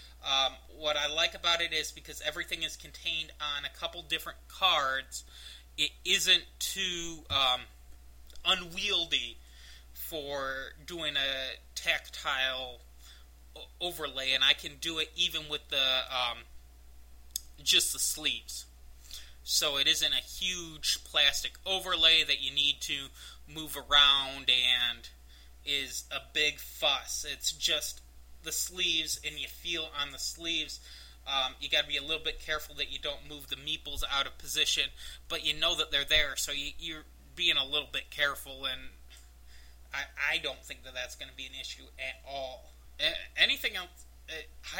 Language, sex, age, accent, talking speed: English, male, 30-49, American, 155 wpm